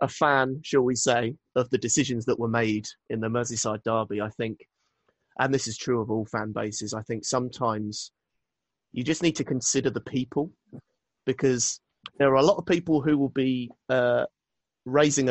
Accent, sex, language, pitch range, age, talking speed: British, male, English, 115-135 Hz, 30-49, 185 wpm